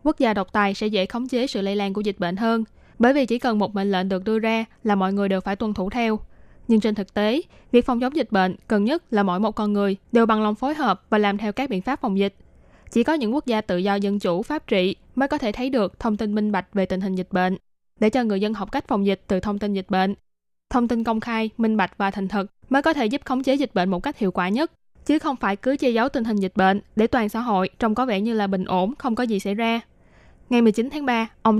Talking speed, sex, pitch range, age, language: 290 wpm, female, 200-245 Hz, 10-29, Vietnamese